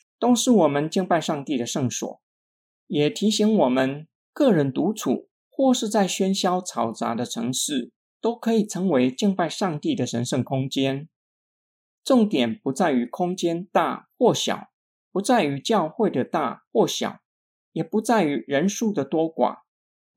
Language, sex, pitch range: Chinese, male, 135-210 Hz